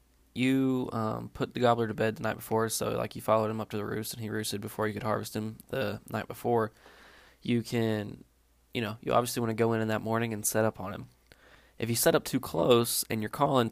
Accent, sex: American, male